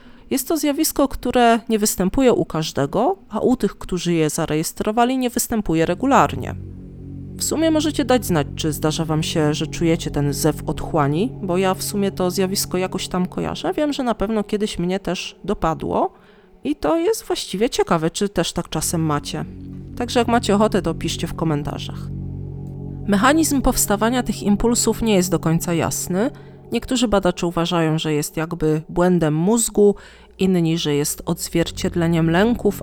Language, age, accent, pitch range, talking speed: Polish, 30-49, native, 160-220 Hz, 160 wpm